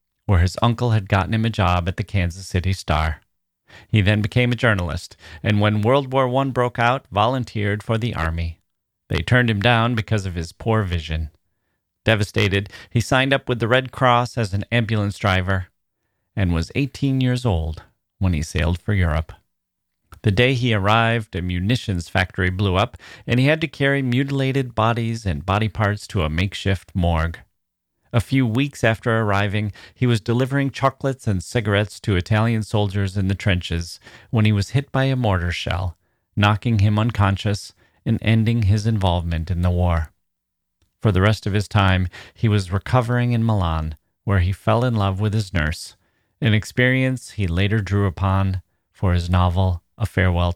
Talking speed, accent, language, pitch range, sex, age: 175 wpm, American, English, 90-120 Hz, male, 40-59